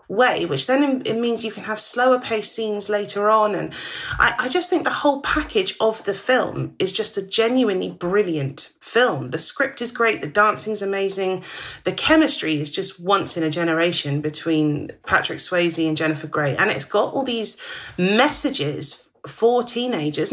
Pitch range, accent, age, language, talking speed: 185-230 Hz, British, 30-49, English, 175 wpm